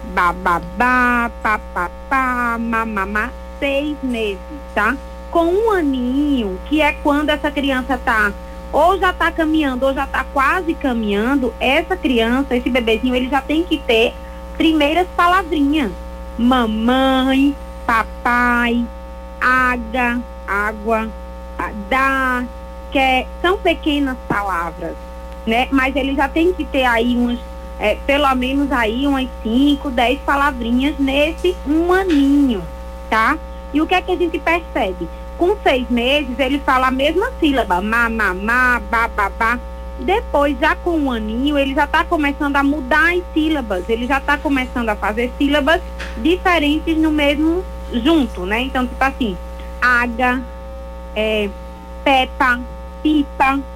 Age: 20-39